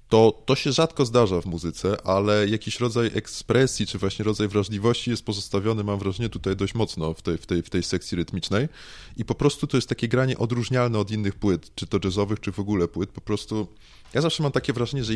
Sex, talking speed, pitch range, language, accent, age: male, 220 wpm, 95-125 Hz, Polish, native, 20-39